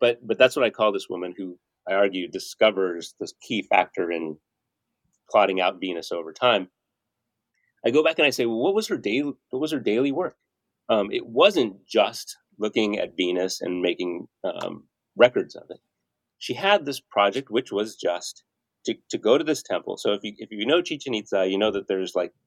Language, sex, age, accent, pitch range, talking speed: English, male, 30-49, American, 95-130 Hz, 205 wpm